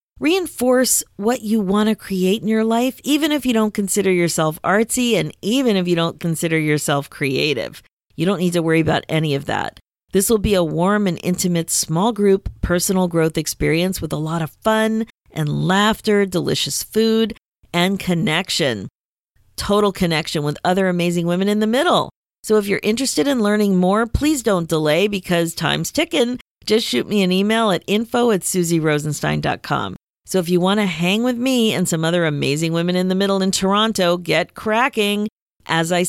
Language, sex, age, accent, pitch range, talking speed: English, female, 40-59, American, 165-210 Hz, 180 wpm